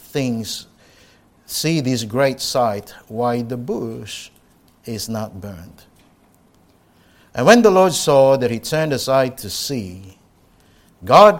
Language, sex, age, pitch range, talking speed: English, male, 60-79, 100-120 Hz, 120 wpm